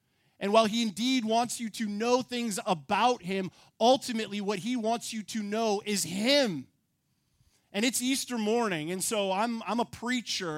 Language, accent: English, American